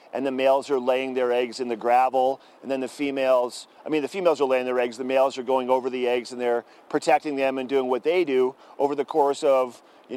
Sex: male